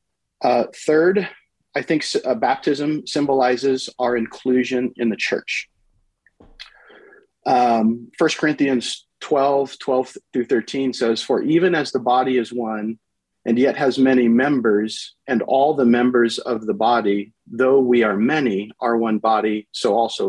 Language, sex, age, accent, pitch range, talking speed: English, male, 40-59, American, 110-130 Hz, 140 wpm